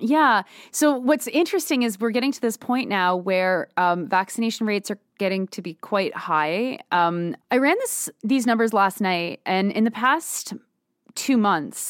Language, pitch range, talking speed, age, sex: English, 175-220 Hz, 175 wpm, 30-49, female